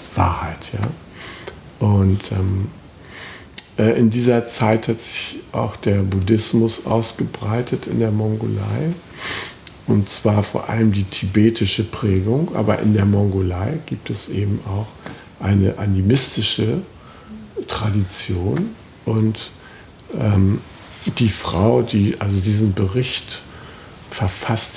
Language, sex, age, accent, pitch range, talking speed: German, male, 60-79, German, 100-110 Hz, 105 wpm